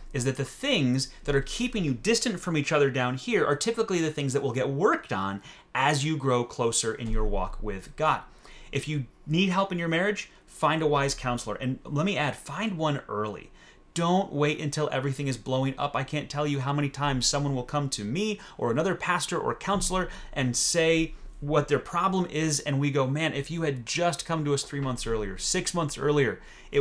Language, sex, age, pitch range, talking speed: English, male, 30-49, 125-165 Hz, 220 wpm